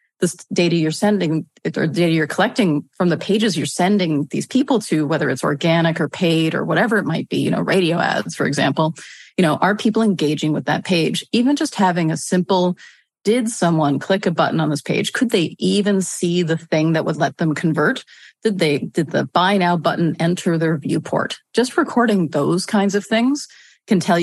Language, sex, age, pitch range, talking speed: English, female, 30-49, 160-200 Hz, 200 wpm